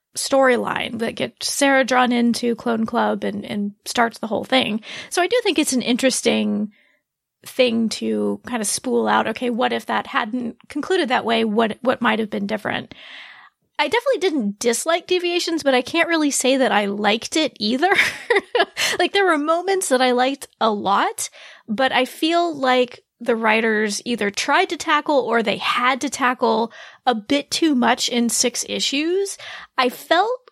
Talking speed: 175 wpm